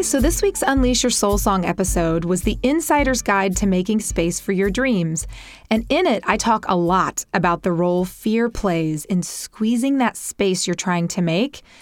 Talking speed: 195 wpm